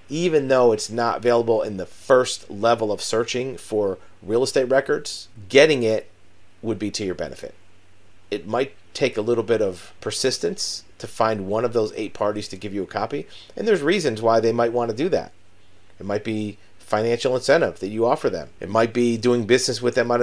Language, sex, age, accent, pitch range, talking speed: English, male, 40-59, American, 100-120 Hz, 200 wpm